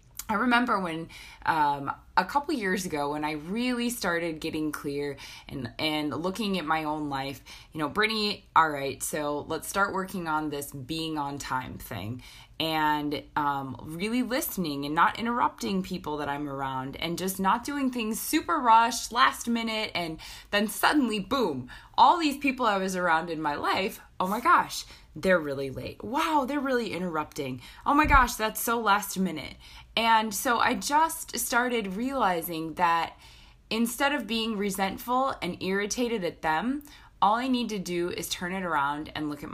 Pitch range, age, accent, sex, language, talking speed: 155-235 Hz, 20-39, American, female, English, 170 wpm